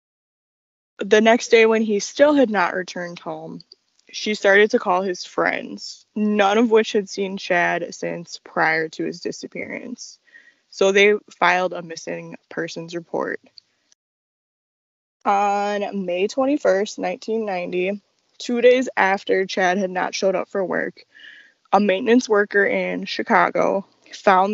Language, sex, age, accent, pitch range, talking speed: English, female, 10-29, American, 180-220 Hz, 130 wpm